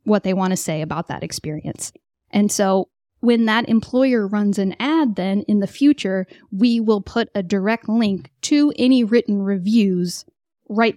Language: English